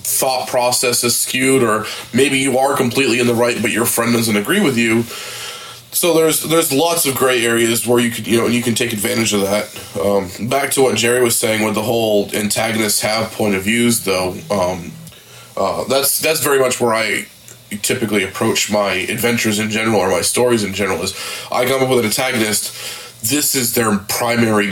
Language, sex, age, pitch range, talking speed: English, male, 20-39, 110-130 Hz, 205 wpm